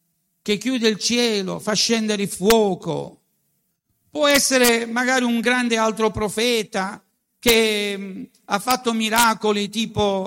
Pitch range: 175-245 Hz